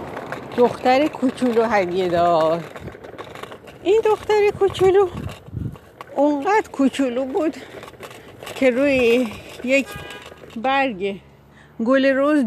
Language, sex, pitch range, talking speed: Persian, female, 190-275 Hz, 75 wpm